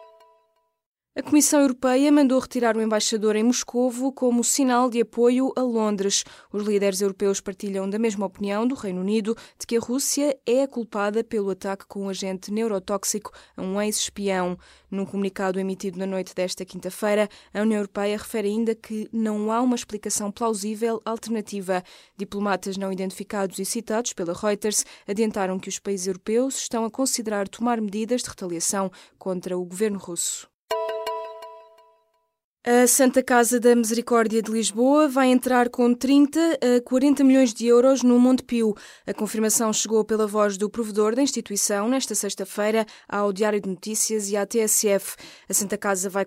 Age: 20-39